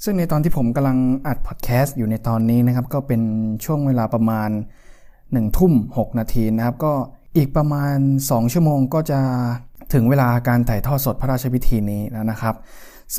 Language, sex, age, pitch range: Thai, male, 20-39, 120-150 Hz